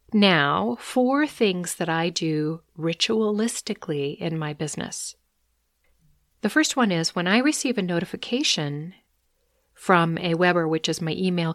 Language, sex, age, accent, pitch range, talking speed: English, female, 40-59, American, 160-225 Hz, 135 wpm